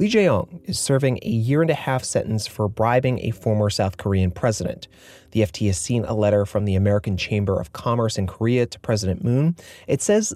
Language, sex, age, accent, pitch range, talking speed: English, male, 30-49, American, 100-130 Hz, 195 wpm